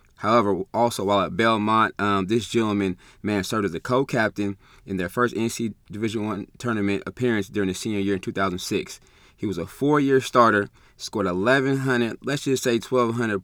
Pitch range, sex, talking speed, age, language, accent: 95-115 Hz, male, 170 wpm, 20-39, English, American